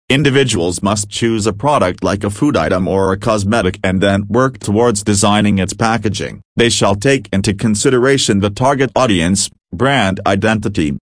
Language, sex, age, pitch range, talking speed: English, male, 40-59, 100-120 Hz, 160 wpm